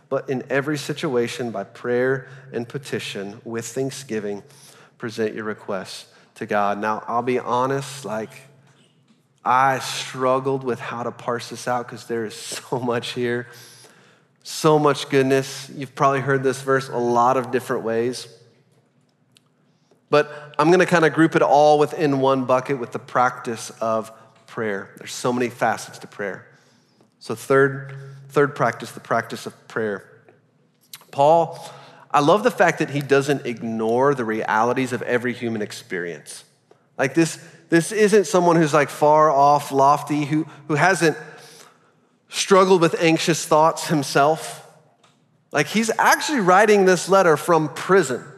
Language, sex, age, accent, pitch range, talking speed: English, male, 30-49, American, 120-155 Hz, 145 wpm